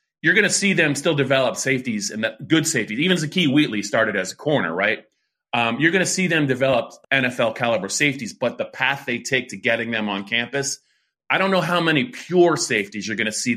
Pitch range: 110-145 Hz